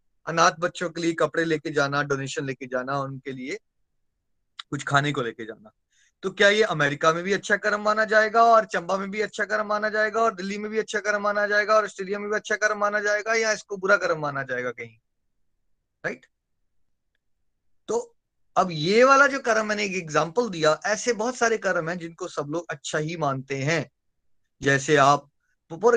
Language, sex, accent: Hindi, male, native